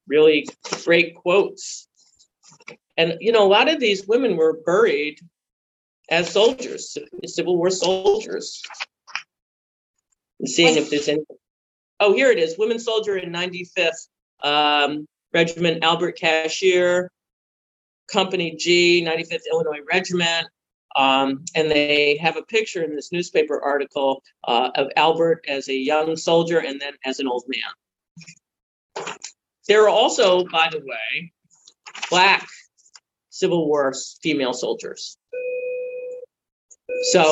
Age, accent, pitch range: 40-59, American, 155-220 Hz